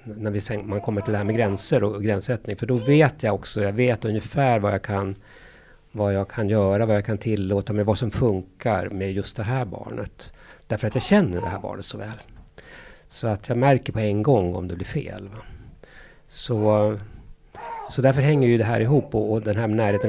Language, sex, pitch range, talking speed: English, male, 100-120 Hz, 215 wpm